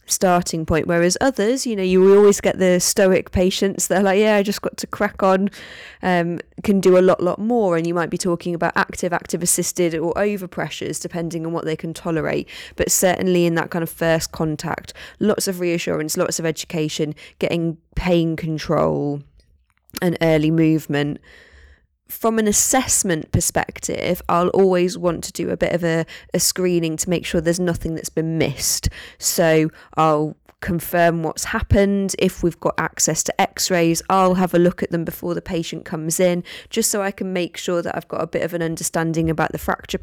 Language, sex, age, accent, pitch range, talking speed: English, female, 20-39, British, 165-185 Hz, 190 wpm